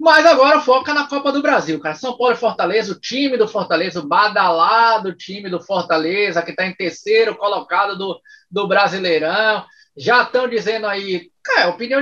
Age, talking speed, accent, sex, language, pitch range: 20-39, 175 wpm, Brazilian, male, Portuguese, 190-270 Hz